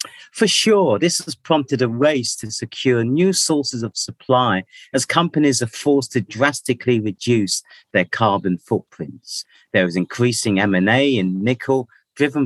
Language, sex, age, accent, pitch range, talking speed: English, male, 40-59, British, 100-135 Hz, 145 wpm